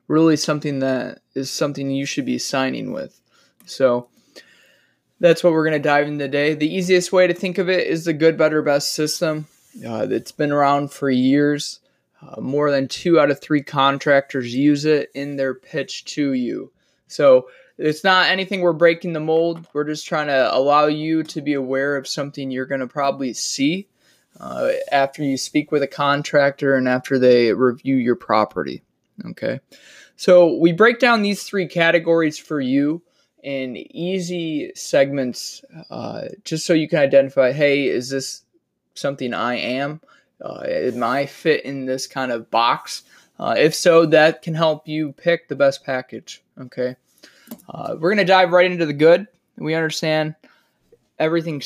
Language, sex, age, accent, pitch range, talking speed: English, male, 20-39, American, 135-165 Hz, 170 wpm